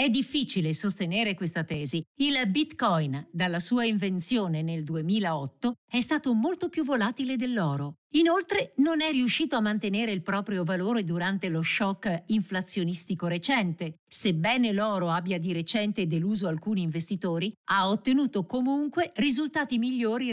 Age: 50-69